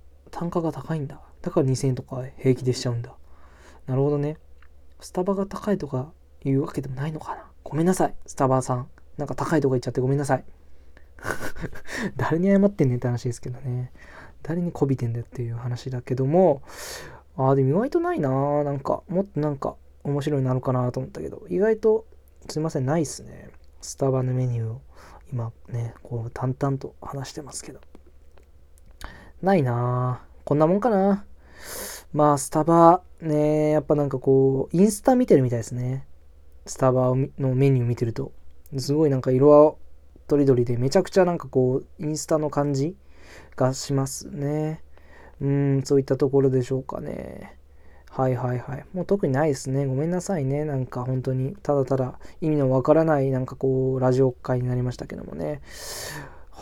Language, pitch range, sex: Japanese, 125-150 Hz, male